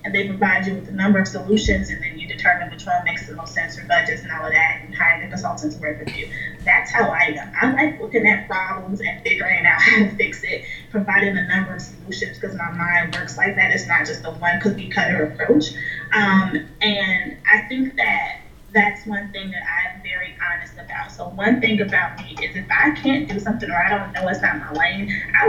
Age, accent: 20-39, American